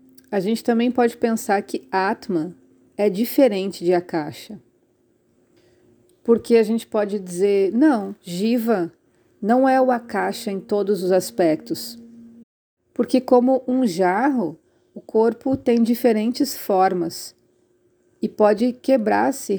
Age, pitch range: 40-59, 190-255 Hz